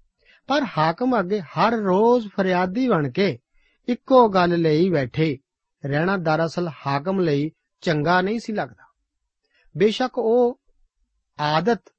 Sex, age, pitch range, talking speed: male, 50-69, 150-200 Hz, 105 wpm